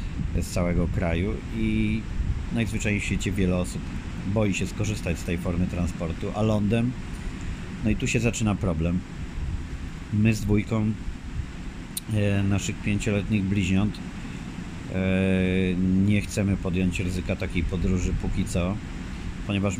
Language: Polish